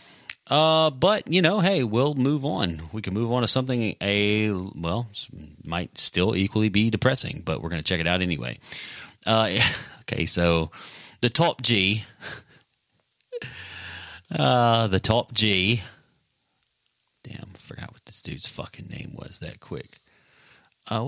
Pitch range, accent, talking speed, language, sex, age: 95-125 Hz, American, 145 wpm, English, male, 30-49